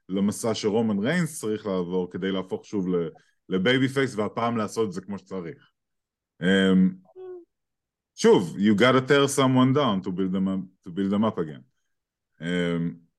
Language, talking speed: English, 125 wpm